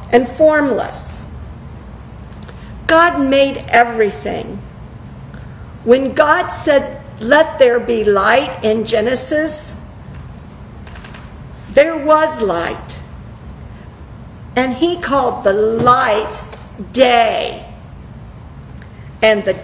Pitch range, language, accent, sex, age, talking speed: 210-285 Hz, English, American, female, 50-69, 75 wpm